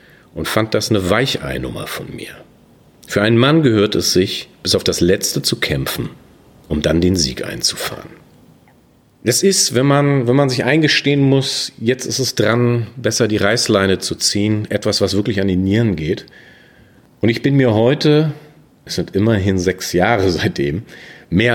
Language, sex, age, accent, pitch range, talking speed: German, male, 40-59, German, 95-125 Hz, 170 wpm